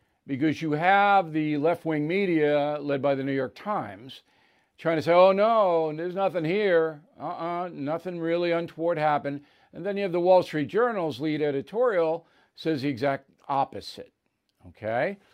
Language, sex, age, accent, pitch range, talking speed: English, male, 50-69, American, 145-180 Hz, 160 wpm